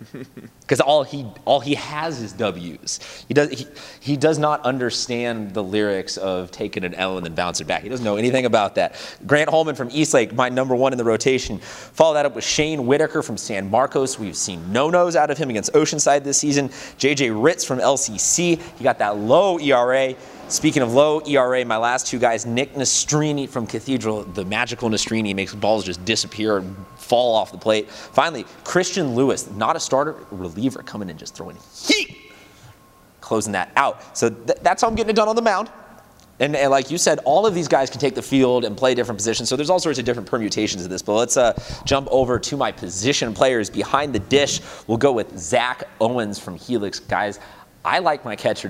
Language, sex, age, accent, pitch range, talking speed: English, male, 30-49, American, 105-145 Hz, 210 wpm